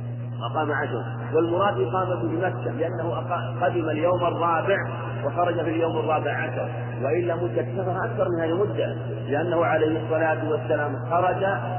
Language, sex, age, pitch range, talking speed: Arabic, male, 40-59, 120-160 Hz, 125 wpm